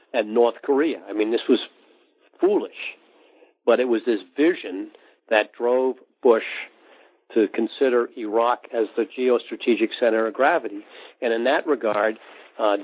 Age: 50-69